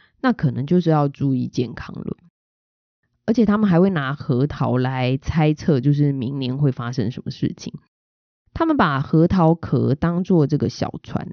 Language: Chinese